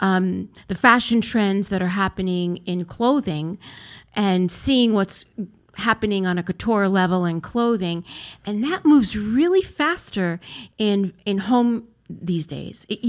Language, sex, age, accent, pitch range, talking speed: English, female, 50-69, American, 185-235 Hz, 140 wpm